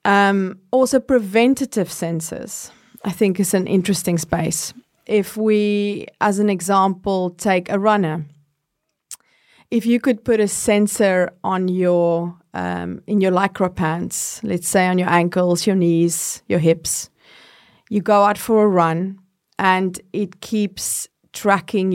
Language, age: Danish, 30-49